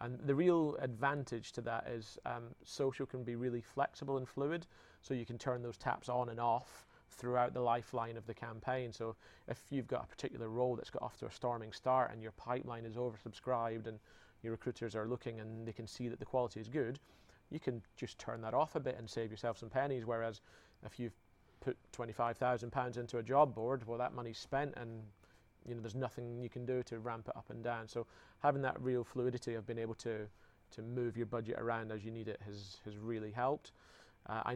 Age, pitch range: 30-49, 115-130 Hz